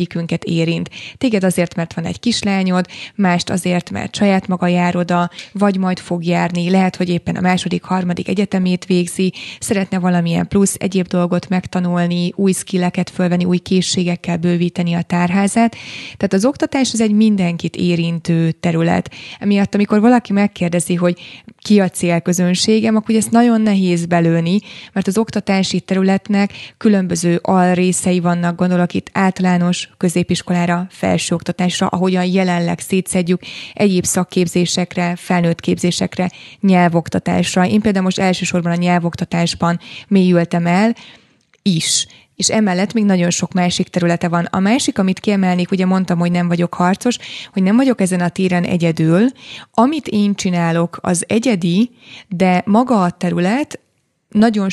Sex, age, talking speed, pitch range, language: female, 20-39, 135 wpm, 175-195 Hz, Hungarian